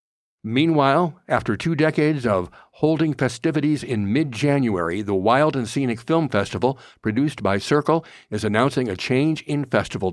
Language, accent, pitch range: English, American, 110-135 Hz